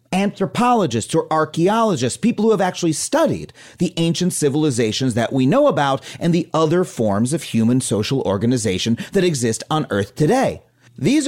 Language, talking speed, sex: English, 155 wpm, male